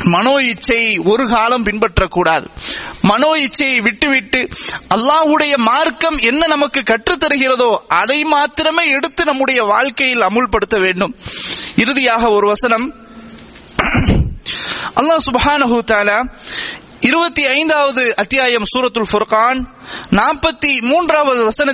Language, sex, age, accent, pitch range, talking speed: English, male, 20-39, Indian, 235-310 Hz, 95 wpm